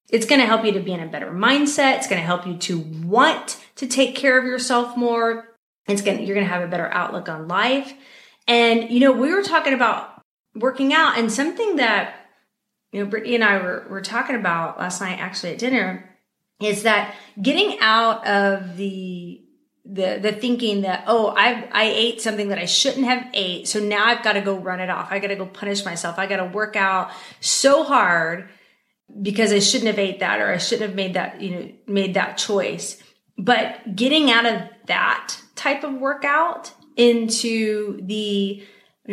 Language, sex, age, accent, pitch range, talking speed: English, female, 30-49, American, 190-240 Hz, 200 wpm